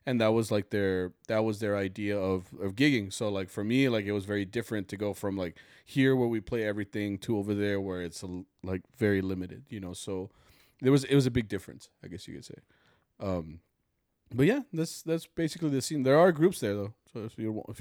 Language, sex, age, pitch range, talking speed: English, male, 30-49, 100-135 Hz, 240 wpm